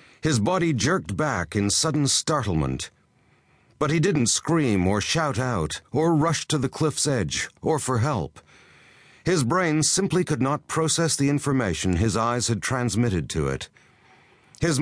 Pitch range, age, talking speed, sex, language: 100-155 Hz, 60-79, 155 wpm, male, English